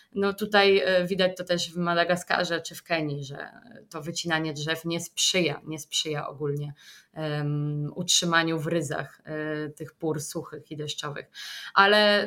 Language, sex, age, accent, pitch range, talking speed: Polish, female, 20-39, native, 165-200 Hz, 135 wpm